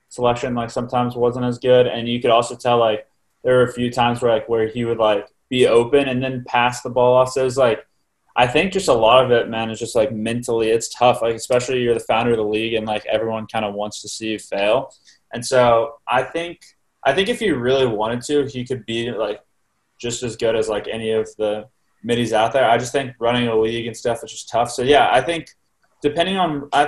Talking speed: 245 wpm